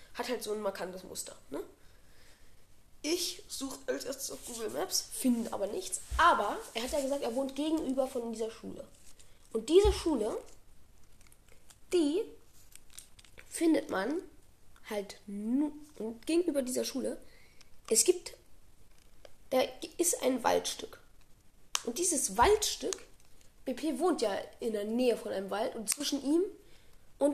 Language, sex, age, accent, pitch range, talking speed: French, female, 20-39, German, 195-295 Hz, 135 wpm